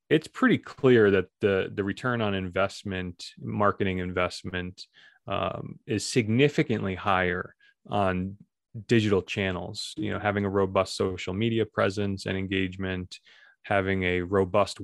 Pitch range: 95-105 Hz